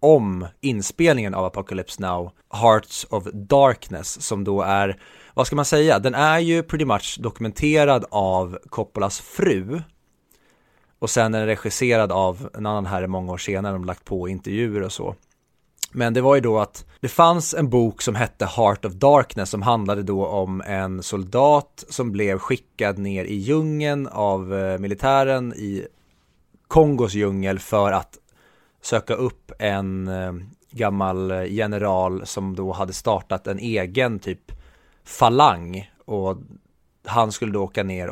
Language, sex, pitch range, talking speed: Swedish, male, 95-125 Hz, 150 wpm